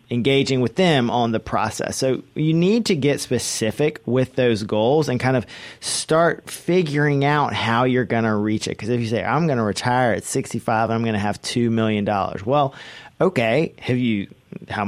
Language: English